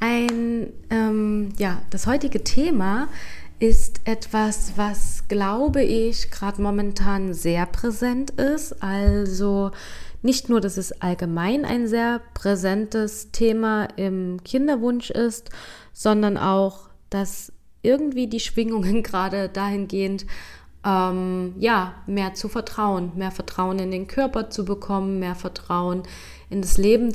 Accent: German